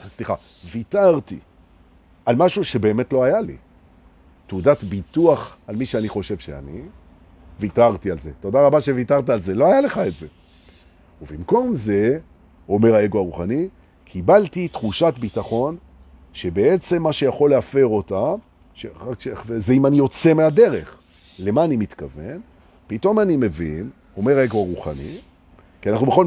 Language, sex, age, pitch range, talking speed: Hebrew, male, 50-69, 85-135 Hz, 135 wpm